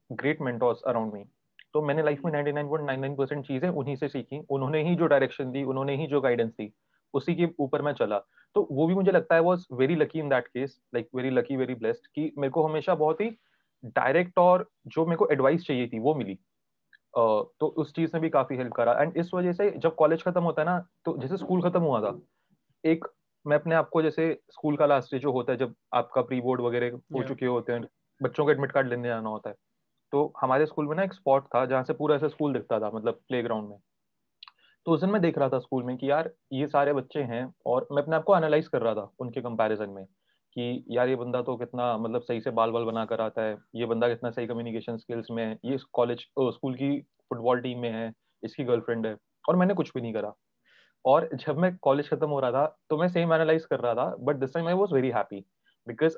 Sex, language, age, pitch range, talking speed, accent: male, Hindi, 30-49, 120-160 Hz, 225 wpm, native